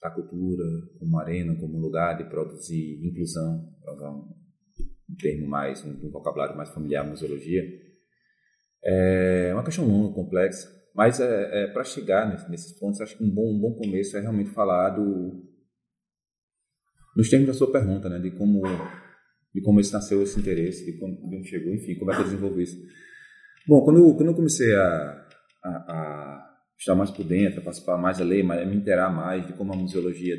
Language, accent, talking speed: Portuguese, Brazilian, 190 wpm